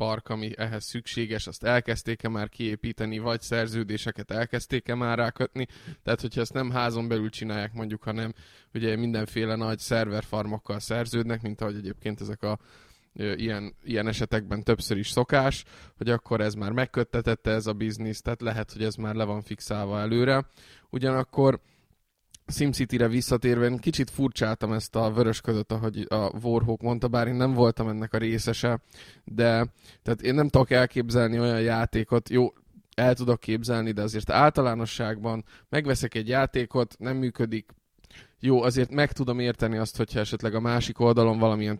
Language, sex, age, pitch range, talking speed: Hungarian, male, 20-39, 110-125 Hz, 155 wpm